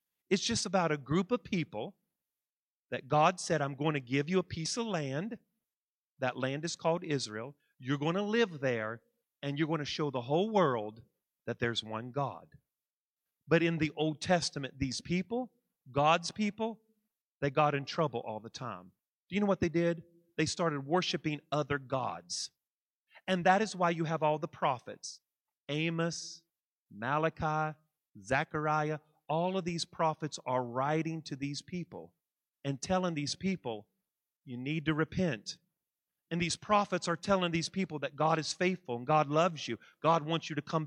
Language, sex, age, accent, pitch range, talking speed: English, male, 40-59, American, 140-180 Hz, 170 wpm